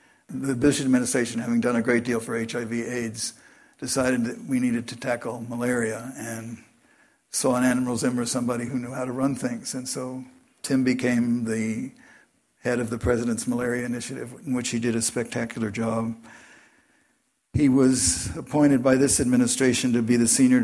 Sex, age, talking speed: male, 60-79, 165 wpm